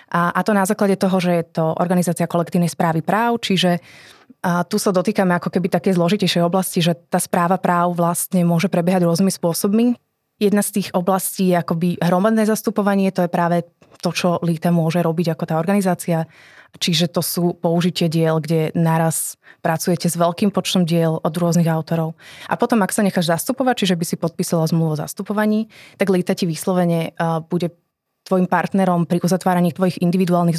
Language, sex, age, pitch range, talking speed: Slovak, female, 20-39, 170-190 Hz, 175 wpm